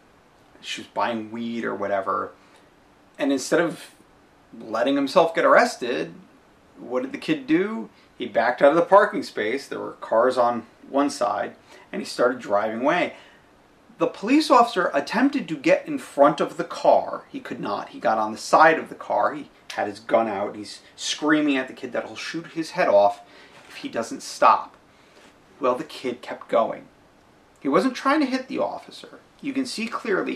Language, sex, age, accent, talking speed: English, male, 30-49, American, 185 wpm